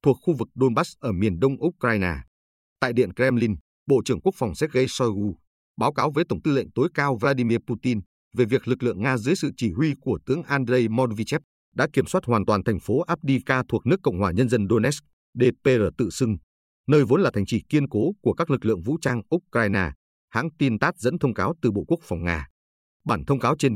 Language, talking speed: Vietnamese, 220 wpm